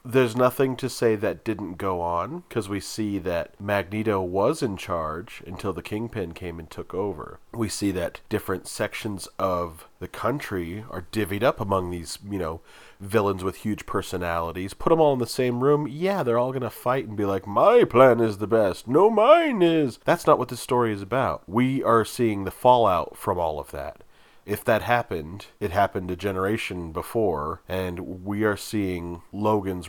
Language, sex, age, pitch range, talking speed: English, male, 30-49, 85-110 Hz, 190 wpm